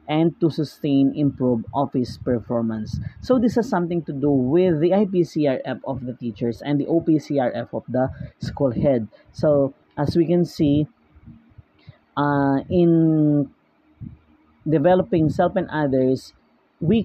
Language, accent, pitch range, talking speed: English, Filipino, 130-175 Hz, 130 wpm